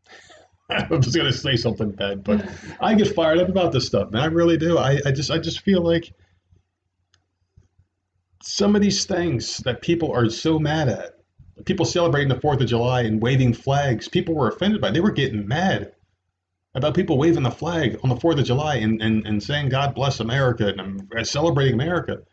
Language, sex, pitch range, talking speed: English, male, 100-155 Hz, 200 wpm